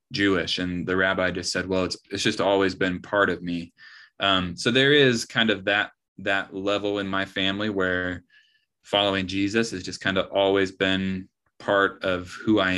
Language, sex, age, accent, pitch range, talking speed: English, male, 20-39, American, 95-105 Hz, 190 wpm